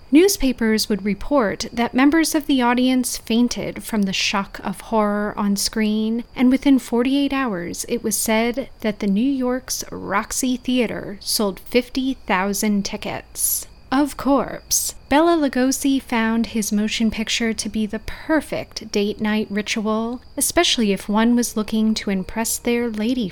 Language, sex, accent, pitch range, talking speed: English, female, American, 210-260 Hz, 145 wpm